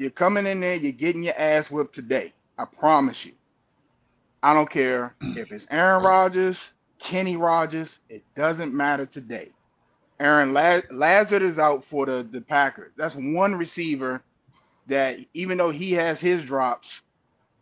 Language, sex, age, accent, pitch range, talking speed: English, male, 30-49, American, 140-175 Hz, 150 wpm